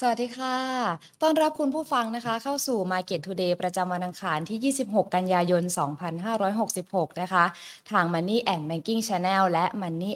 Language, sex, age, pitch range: Thai, female, 20-39, 180-235 Hz